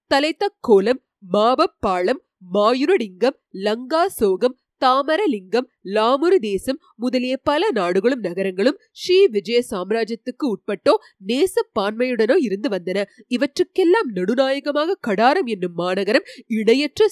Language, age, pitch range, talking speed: Tamil, 30-49, 205-295 Hz, 65 wpm